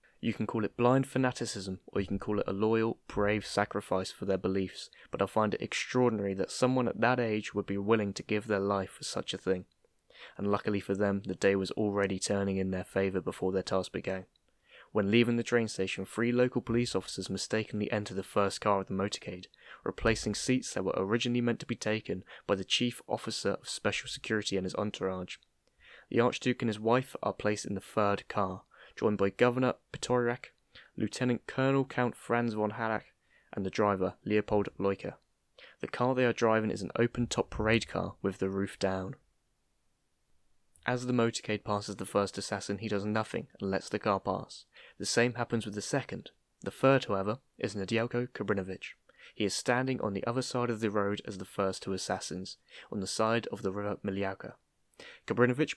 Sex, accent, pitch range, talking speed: male, British, 95-120 Hz, 195 wpm